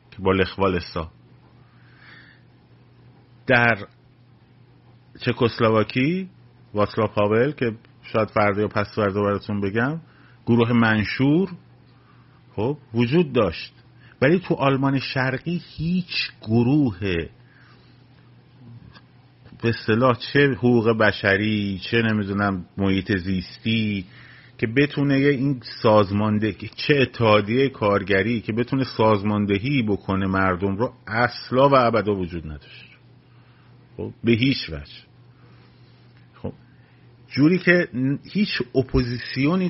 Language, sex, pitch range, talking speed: Persian, male, 105-130 Hz, 95 wpm